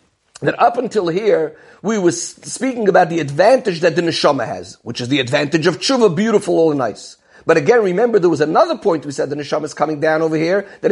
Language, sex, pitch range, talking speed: English, male, 165-230 Hz, 220 wpm